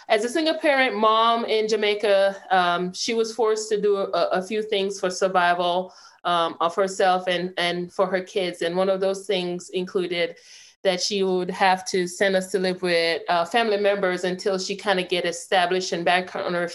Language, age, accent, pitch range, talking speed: English, 30-49, American, 180-225 Hz, 200 wpm